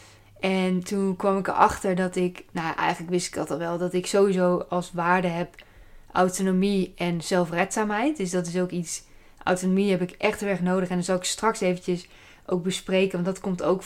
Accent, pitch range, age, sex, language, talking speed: Dutch, 175-190 Hz, 20-39, female, Dutch, 205 wpm